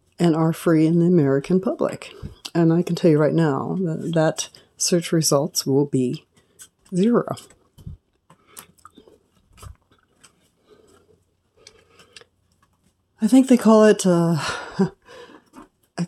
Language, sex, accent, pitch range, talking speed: English, female, American, 145-175 Hz, 105 wpm